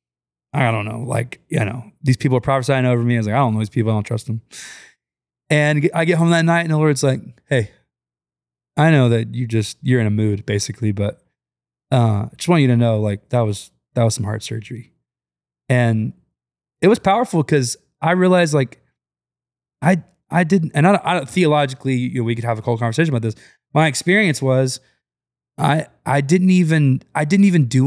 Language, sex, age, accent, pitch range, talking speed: English, male, 20-39, American, 110-145 Hz, 210 wpm